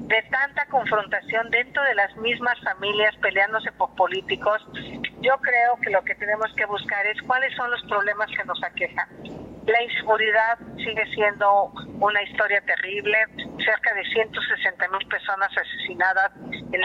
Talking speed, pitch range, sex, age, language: 140 wpm, 205-245 Hz, female, 50-69, Spanish